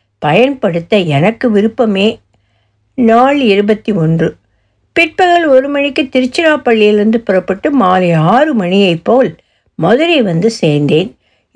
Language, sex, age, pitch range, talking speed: Tamil, female, 60-79, 185-260 Hz, 95 wpm